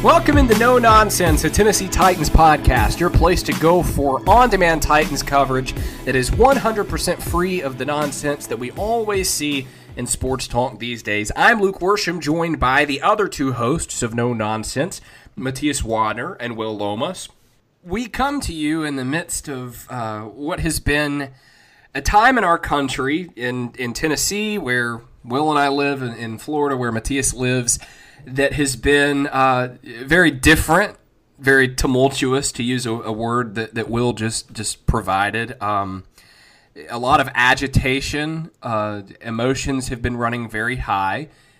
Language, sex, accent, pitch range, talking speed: English, male, American, 115-150 Hz, 160 wpm